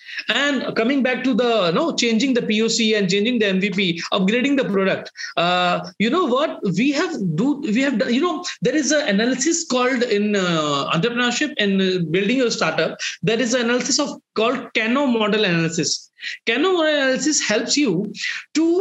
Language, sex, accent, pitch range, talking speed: English, male, Indian, 195-275 Hz, 180 wpm